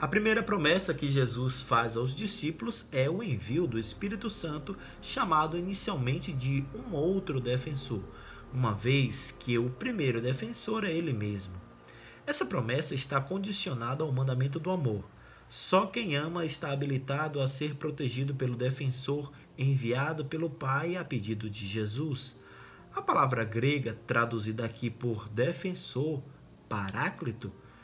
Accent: Brazilian